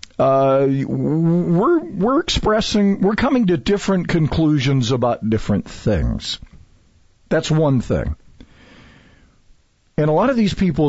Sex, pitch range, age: male, 125-195 Hz, 50-69